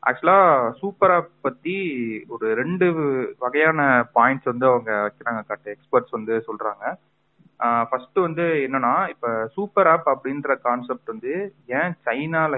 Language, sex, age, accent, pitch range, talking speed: Tamil, male, 30-49, native, 115-150 Hz, 100 wpm